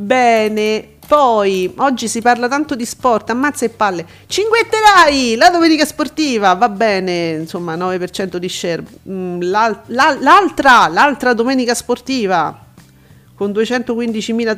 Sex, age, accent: female, 40-59, native